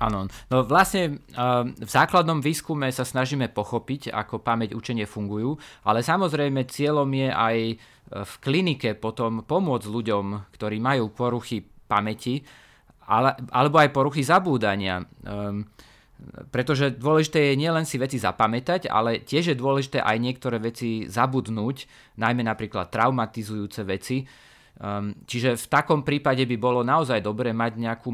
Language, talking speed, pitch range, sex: Slovak, 135 wpm, 110-140 Hz, male